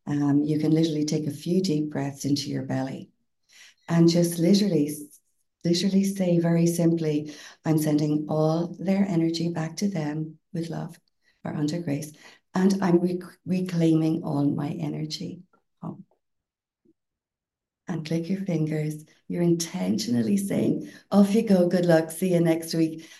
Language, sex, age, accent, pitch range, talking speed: English, female, 60-79, Irish, 150-175 Hz, 140 wpm